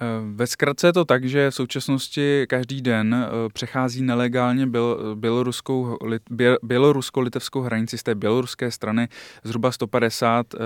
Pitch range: 110-125 Hz